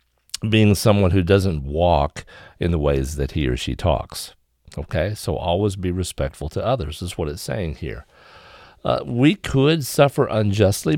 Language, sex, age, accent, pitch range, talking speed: English, male, 50-69, American, 80-105 Hz, 165 wpm